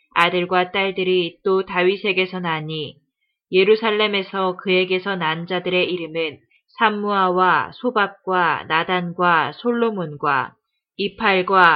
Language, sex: Korean, female